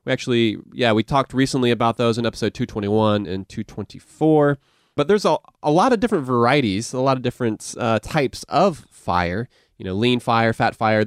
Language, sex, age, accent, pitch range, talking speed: English, male, 20-39, American, 105-140 Hz, 190 wpm